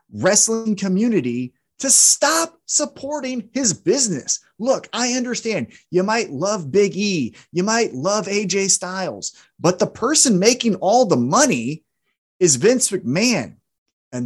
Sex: male